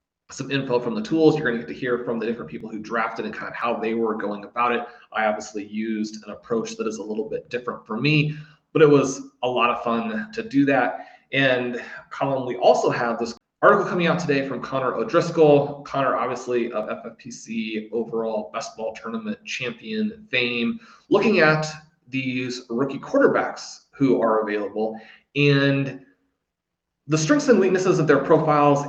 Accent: American